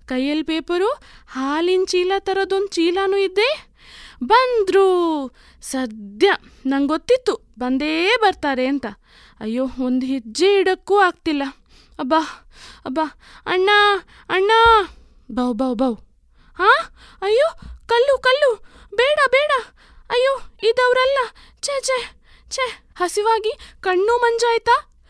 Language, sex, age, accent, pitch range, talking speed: Kannada, female, 20-39, native, 255-385 Hz, 95 wpm